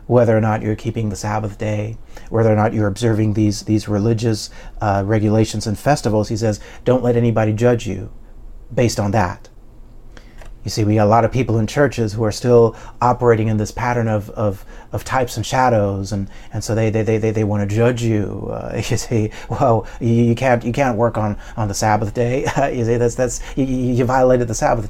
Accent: American